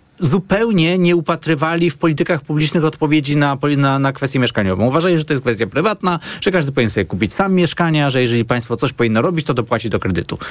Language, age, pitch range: Polish, 30-49, 130-175 Hz